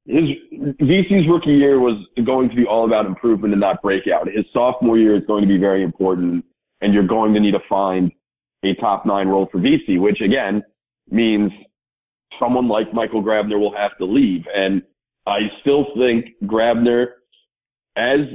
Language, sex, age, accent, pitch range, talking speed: English, male, 40-59, American, 105-135 Hz, 170 wpm